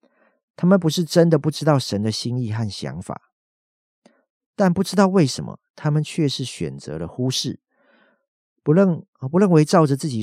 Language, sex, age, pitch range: Chinese, male, 50-69, 110-155 Hz